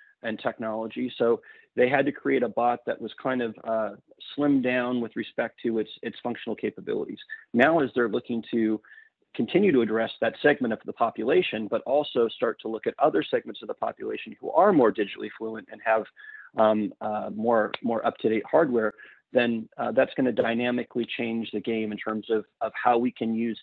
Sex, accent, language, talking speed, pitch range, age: male, American, English, 195 wpm, 110-130 Hz, 30-49